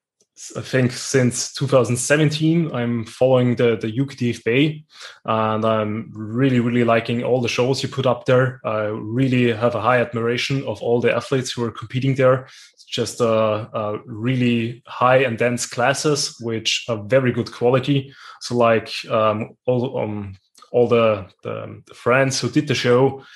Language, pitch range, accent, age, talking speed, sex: German, 115-130 Hz, German, 20-39, 165 wpm, male